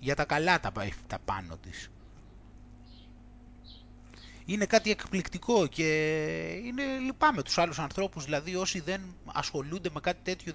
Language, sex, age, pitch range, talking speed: Greek, male, 30-49, 110-180 Hz, 125 wpm